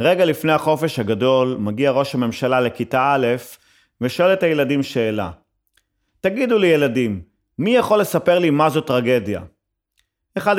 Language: Hebrew